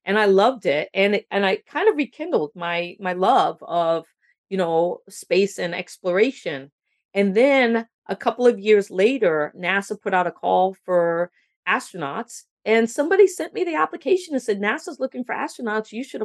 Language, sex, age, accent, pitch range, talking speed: English, female, 40-59, American, 180-240 Hz, 175 wpm